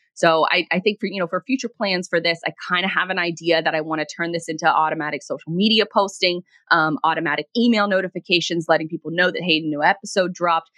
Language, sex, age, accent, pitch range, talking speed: English, female, 20-39, American, 160-200 Hz, 230 wpm